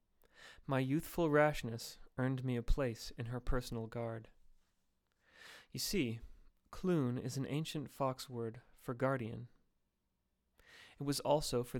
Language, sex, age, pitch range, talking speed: English, male, 30-49, 110-140 Hz, 125 wpm